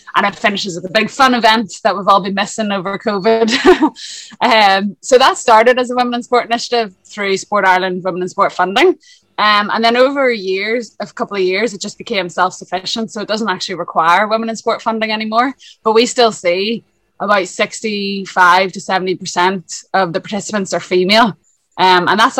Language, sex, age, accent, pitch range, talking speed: English, female, 20-39, Irish, 185-230 Hz, 190 wpm